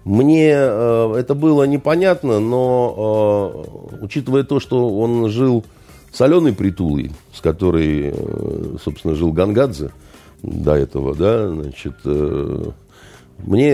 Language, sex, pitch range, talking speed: Russian, male, 85-135 Hz, 100 wpm